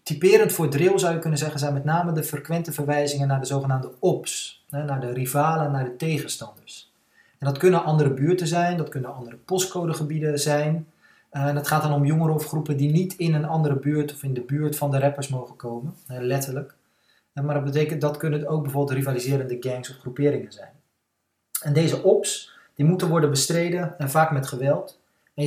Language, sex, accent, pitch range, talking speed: Dutch, male, Dutch, 140-170 Hz, 195 wpm